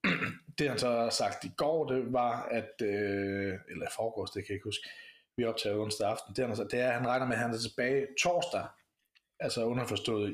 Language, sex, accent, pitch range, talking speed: Danish, male, native, 115-135 Hz, 225 wpm